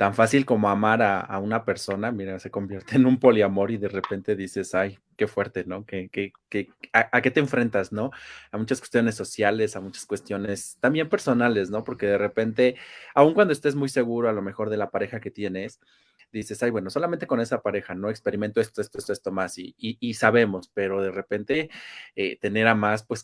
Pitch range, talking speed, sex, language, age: 100-140 Hz, 215 wpm, male, Spanish, 30-49